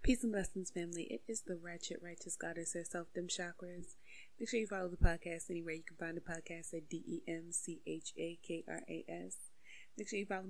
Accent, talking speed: American, 175 wpm